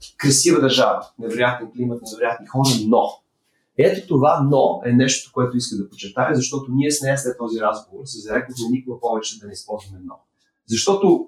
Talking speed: 170 wpm